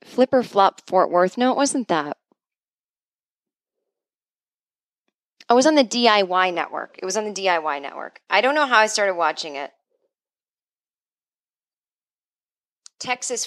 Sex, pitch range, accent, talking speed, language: female, 175-230 Hz, American, 130 wpm, English